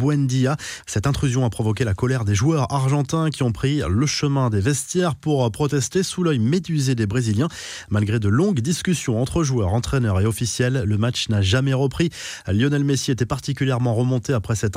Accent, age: French, 20-39